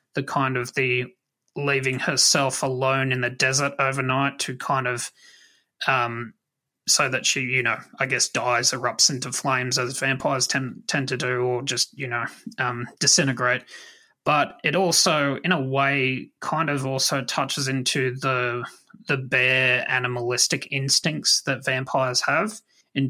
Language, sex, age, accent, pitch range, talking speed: English, male, 20-39, Australian, 125-140 Hz, 150 wpm